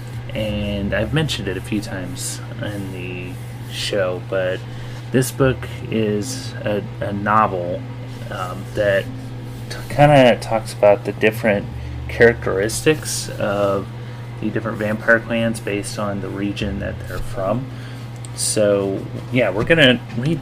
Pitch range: 105-120 Hz